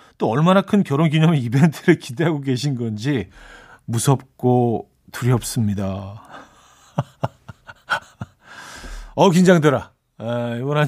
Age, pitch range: 40-59, 110-160 Hz